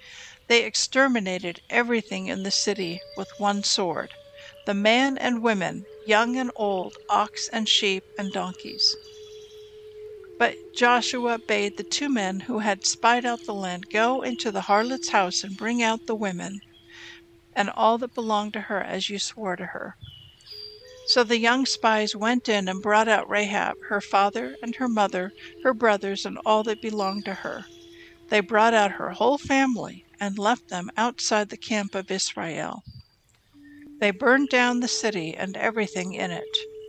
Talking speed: 165 wpm